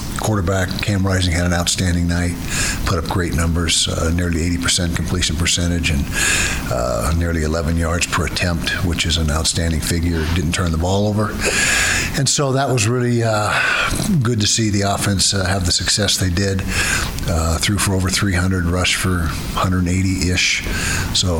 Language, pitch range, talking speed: English, 85-100 Hz, 170 wpm